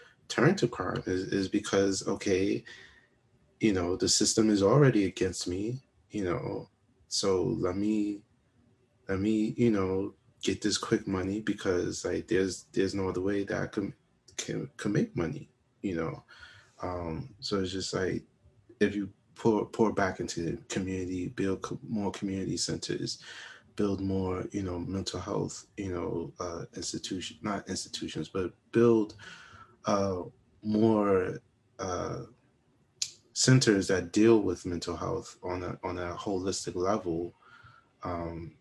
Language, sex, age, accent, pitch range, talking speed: English, male, 20-39, American, 90-110 Hz, 145 wpm